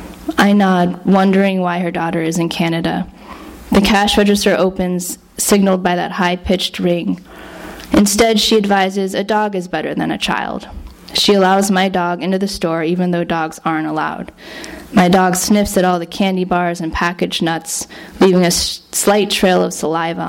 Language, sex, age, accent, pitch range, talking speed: English, female, 10-29, American, 175-200 Hz, 170 wpm